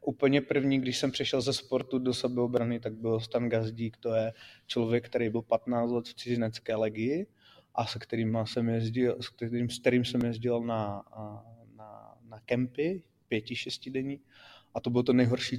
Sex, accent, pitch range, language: male, native, 115-125 Hz, Czech